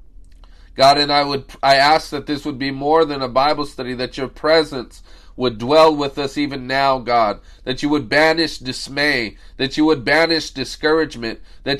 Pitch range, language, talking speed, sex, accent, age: 125-155 Hz, English, 185 wpm, male, American, 30-49